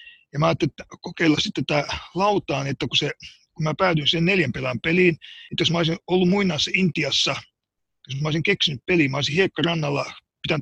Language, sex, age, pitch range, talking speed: Finnish, male, 50-69, 150-185 Hz, 180 wpm